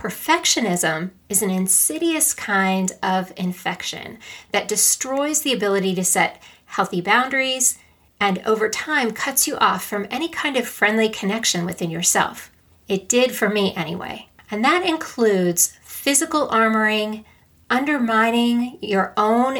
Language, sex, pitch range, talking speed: English, female, 190-240 Hz, 130 wpm